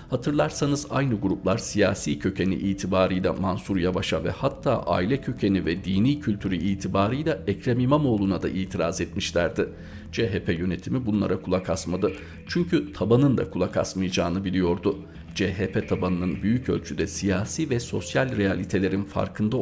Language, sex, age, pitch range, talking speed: Turkish, male, 50-69, 90-105 Hz, 125 wpm